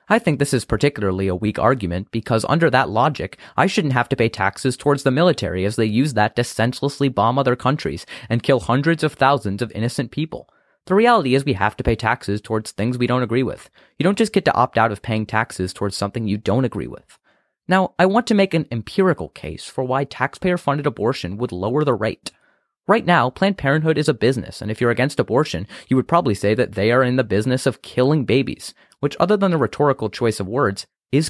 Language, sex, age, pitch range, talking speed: English, male, 30-49, 110-155 Hz, 225 wpm